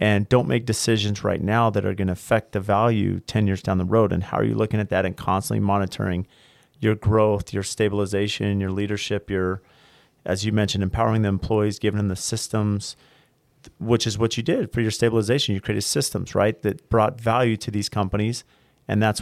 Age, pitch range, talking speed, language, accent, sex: 40-59, 105-130 Hz, 205 wpm, English, American, male